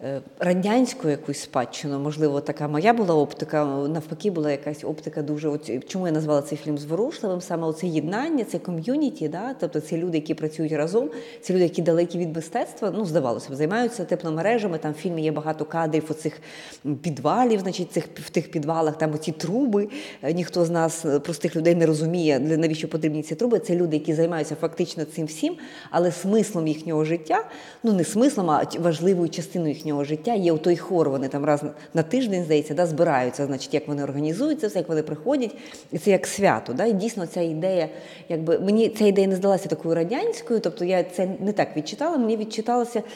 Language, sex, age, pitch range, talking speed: Ukrainian, female, 30-49, 155-210 Hz, 180 wpm